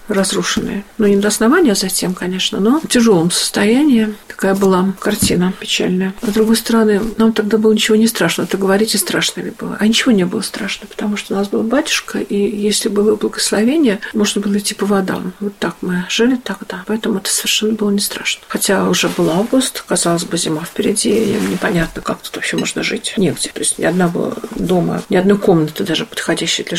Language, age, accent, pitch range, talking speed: Russian, 50-69, native, 195-225 Hz, 200 wpm